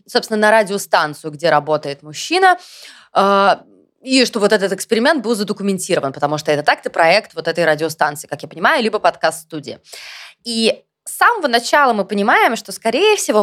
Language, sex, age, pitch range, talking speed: Russian, female, 20-39, 170-235 Hz, 165 wpm